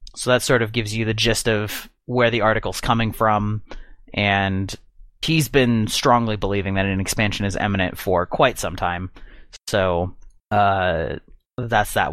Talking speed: 160 wpm